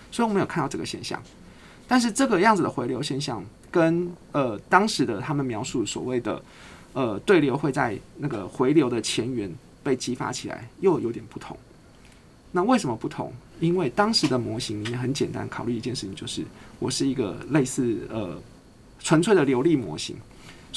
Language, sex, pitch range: Chinese, male, 125-185 Hz